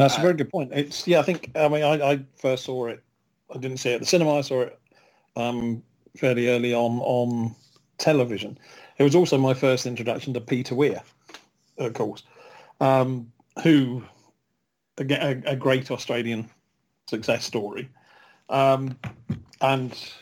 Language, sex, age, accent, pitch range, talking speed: English, male, 40-59, British, 120-140 Hz, 155 wpm